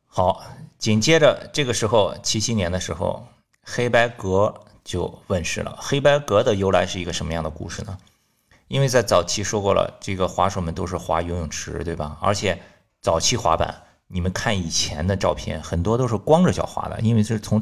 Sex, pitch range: male, 90-110 Hz